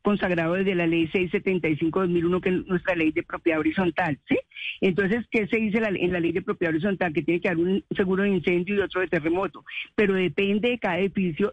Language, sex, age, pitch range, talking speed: Spanish, female, 40-59, 175-215 Hz, 215 wpm